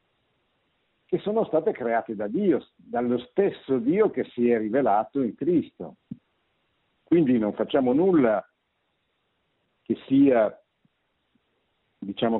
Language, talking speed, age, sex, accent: Italian, 105 wpm, 60-79, male, native